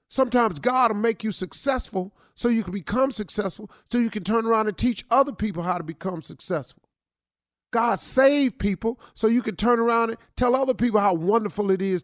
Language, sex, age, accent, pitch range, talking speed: English, male, 50-69, American, 175-240 Hz, 200 wpm